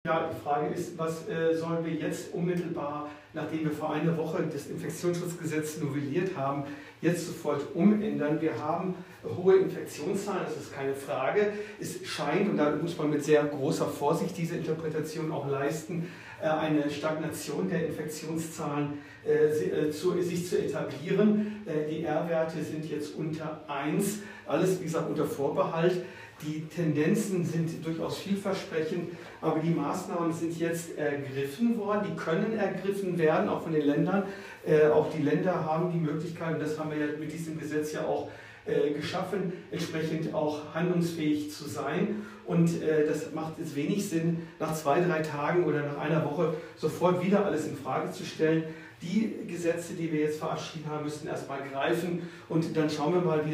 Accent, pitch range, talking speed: German, 150-175 Hz, 165 wpm